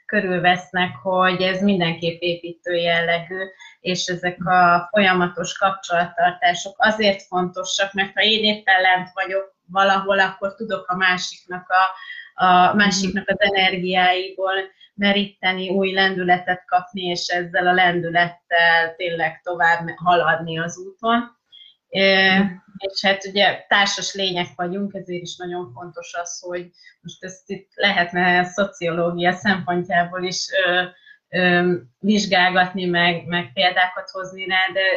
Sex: female